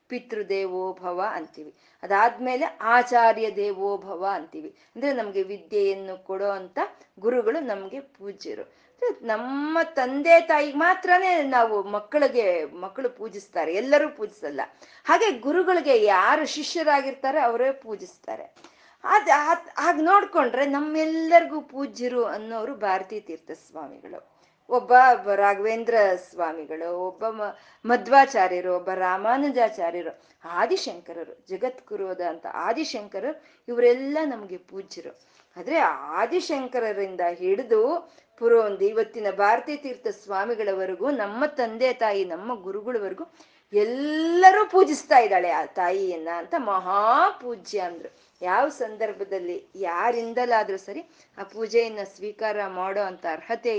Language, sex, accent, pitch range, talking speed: Kannada, female, native, 195-300 Hz, 95 wpm